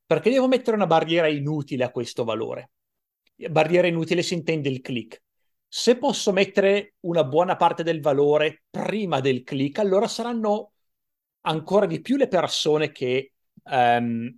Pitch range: 150-210 Hz